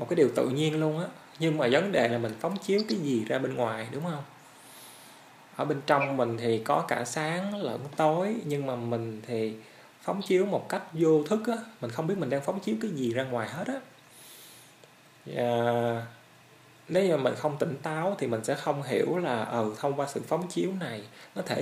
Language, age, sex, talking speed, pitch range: Vietnamese, 20-39, male, 215 wpm, 115-155 Hz